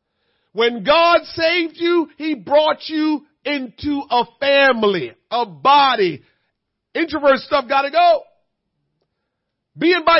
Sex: male